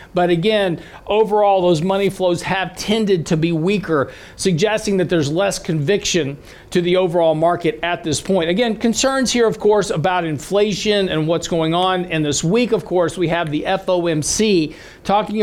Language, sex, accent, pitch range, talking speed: English, male, American, 160-195 Hz, 170 wpm